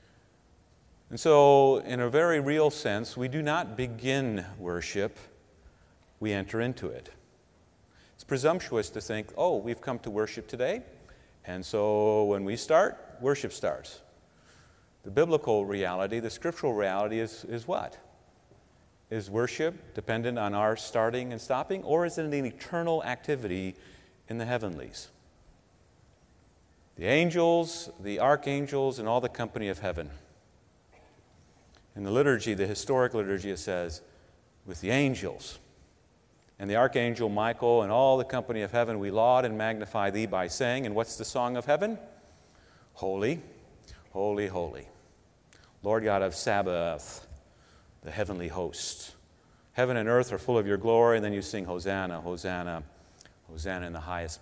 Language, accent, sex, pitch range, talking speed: English, American, male, 90-120 Hz, 145 wpm